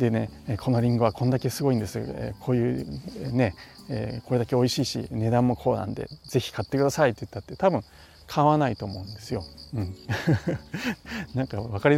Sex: male